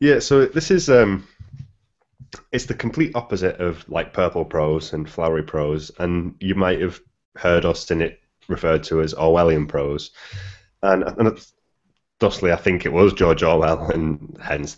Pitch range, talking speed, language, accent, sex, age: 80-100 Hz, 160 wpm, English, British, male, 20-39